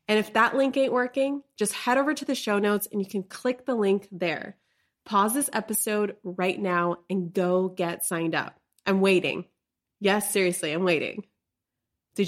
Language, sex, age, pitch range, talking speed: English, female, 20-39, 180-225 Hz, 180 wpm